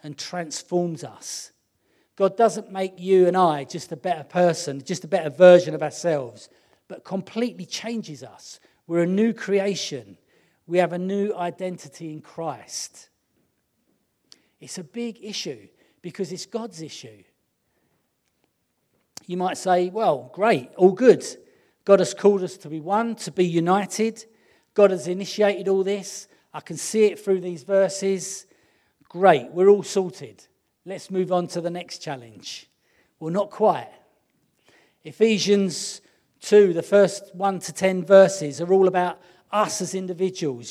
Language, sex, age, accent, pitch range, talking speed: English, male, 40-59, British, 170-200 Hz, 145 wpm